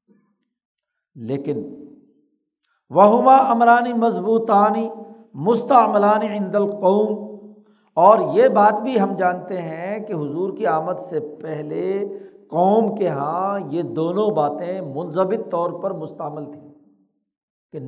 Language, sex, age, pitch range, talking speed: Urdu, male, 60-79, 150-205 Hz, 105 wpm